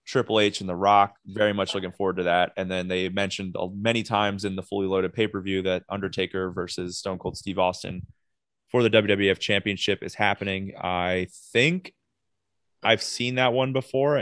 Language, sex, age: English, male, 20-39